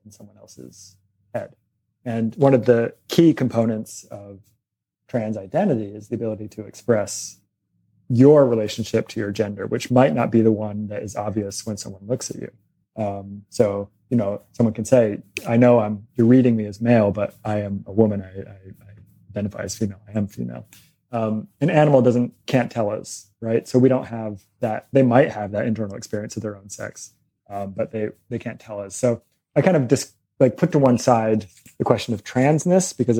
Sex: male